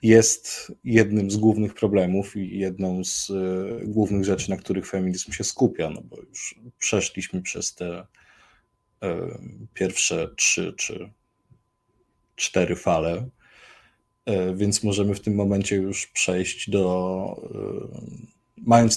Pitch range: 90-105 Hz